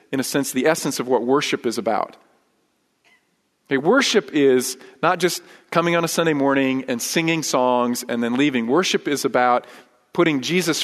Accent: American